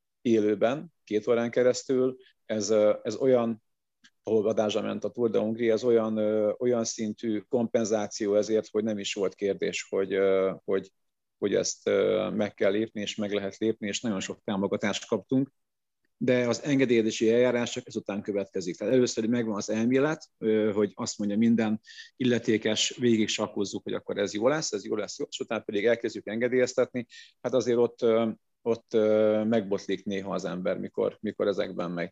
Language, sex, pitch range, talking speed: Hungarian, male, 105-120 Hz, 155 wpm